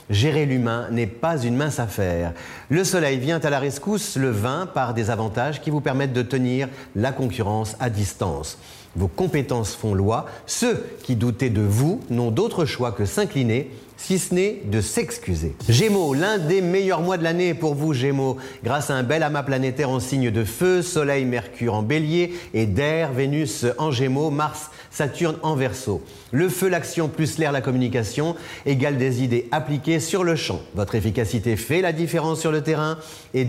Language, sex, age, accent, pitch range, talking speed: French, male, 40-59, French, 120-165 Hz, 185 wpm